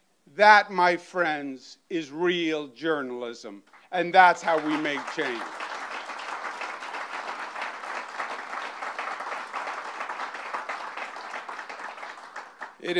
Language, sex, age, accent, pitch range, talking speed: English, male, 50-69, American, 165-195 Hz, 60 wpm